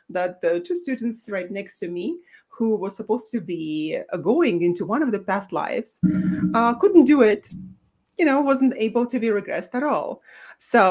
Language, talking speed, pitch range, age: English, 195 wpm, 180-255 Hz, 30-49